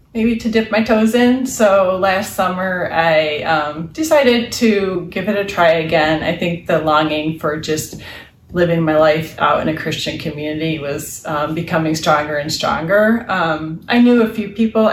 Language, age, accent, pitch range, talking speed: English, 30-49, American, 160-200 Hz, 175 wpm